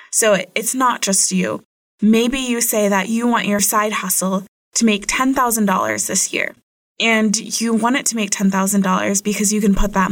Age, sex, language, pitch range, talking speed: 20-39, female, English, 190-225 Hz, 185 wpm